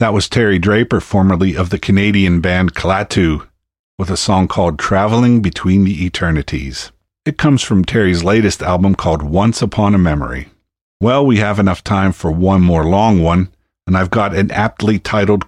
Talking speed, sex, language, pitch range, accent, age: 175 wpm, male, English, 90-110 Hz, American, 50-69